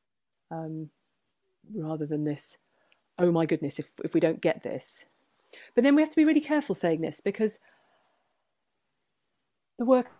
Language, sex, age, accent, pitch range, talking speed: English, female, 40-59, British, 155-185 Hz, 155 wpm